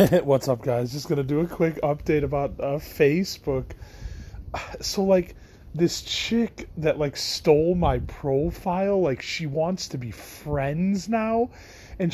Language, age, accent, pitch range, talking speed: English, 30-49, American, 120-170 Hz, 145 wpm